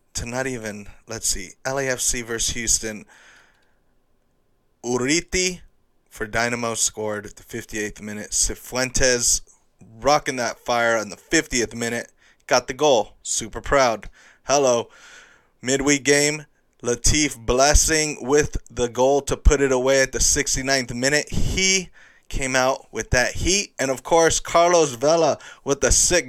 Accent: American